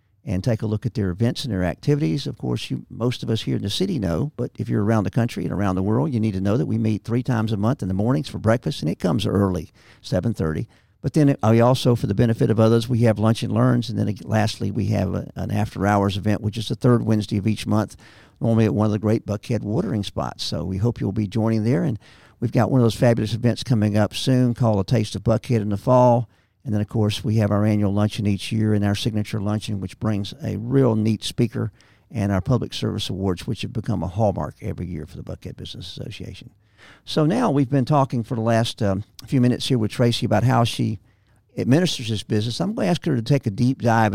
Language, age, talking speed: English, 50-69, 255 wpm